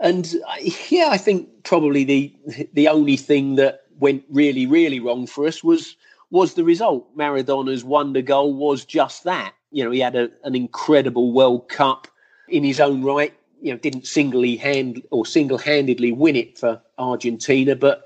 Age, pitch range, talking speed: 40-59, 125-155 Hz, 175 wpm